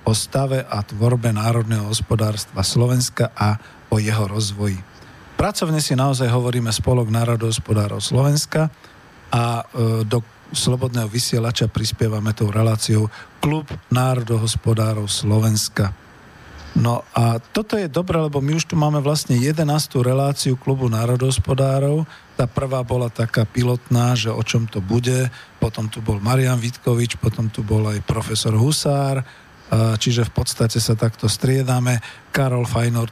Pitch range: 110-130 Hz